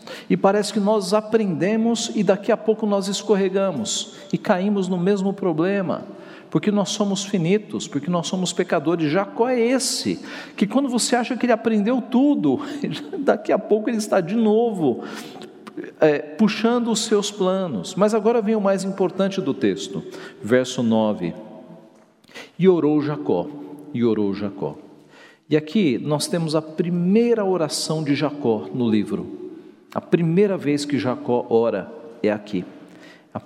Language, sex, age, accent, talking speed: Portuguese, male, 50-69, Brazilian, 145 wpm